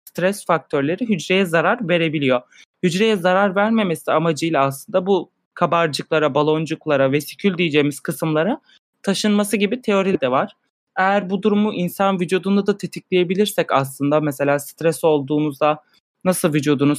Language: Turkish